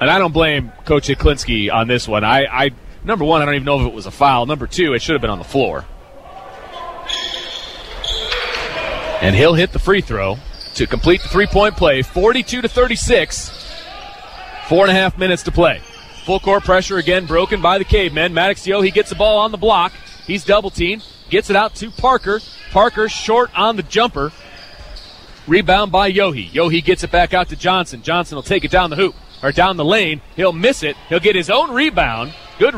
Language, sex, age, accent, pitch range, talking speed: English, male, 30-49, American, 170-230 Hz, 200 wpm